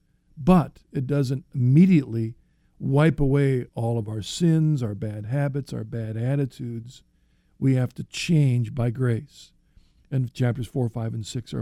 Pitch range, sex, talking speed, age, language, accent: 115-145 Hz, male, 150 wpm, 50-69, English, American